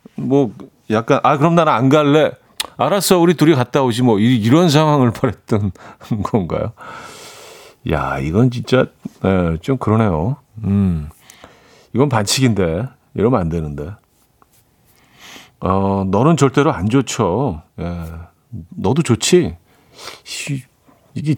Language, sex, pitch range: Korean, male, 105-150 Hz